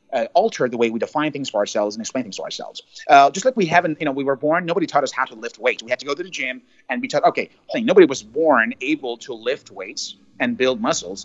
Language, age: English, 30-49